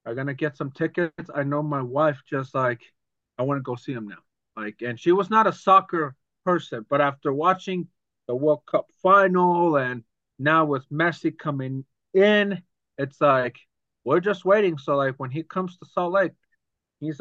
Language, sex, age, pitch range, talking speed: English, male, 30-49, 135-165 Hz, 185 wpm